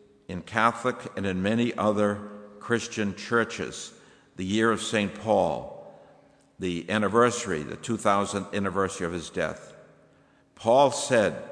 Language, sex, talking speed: English, male, 120 wpm